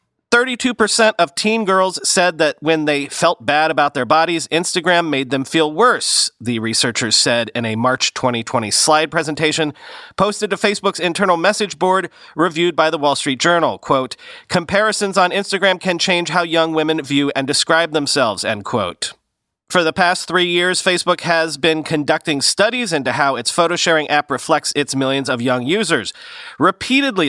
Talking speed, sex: 165 wpm, male